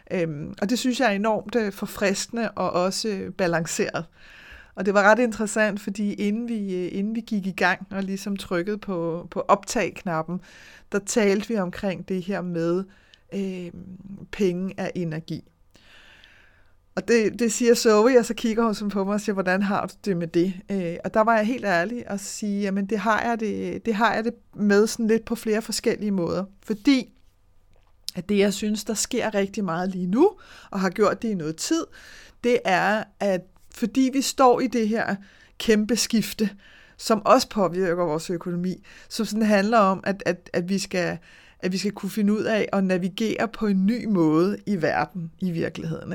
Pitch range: 180-220 Hz